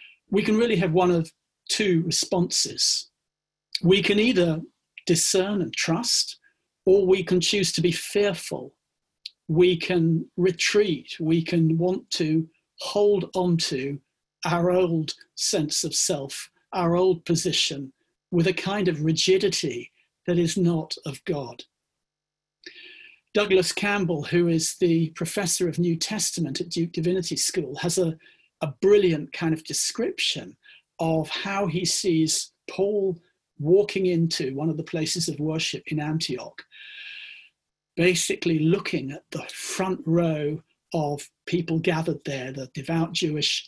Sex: male